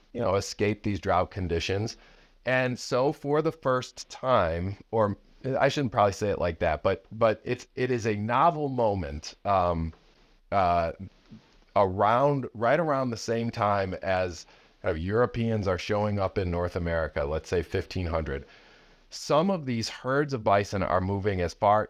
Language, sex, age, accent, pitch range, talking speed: English, male, 40-59, American, 90-120 Hz, 155 wpm